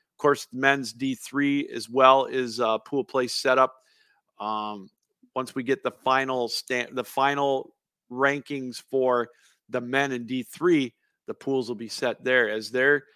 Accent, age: American, 50-69